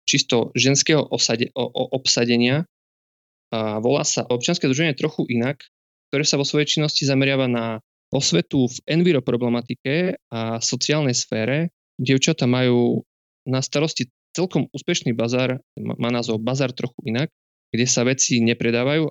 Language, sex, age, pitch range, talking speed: Slovak, male, 20-39, 115-135 Hz, 120 wpm